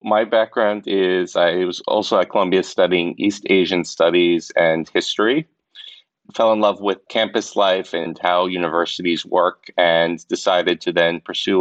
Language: English